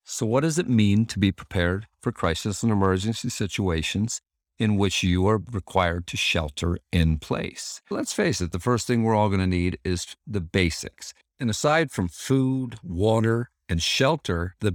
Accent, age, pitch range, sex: American, 50-69, 90-115 Hz, male